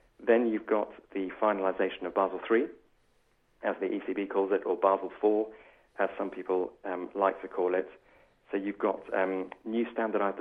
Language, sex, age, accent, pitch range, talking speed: English, male, 40-59, British, 90-105 Hz, 175 wpm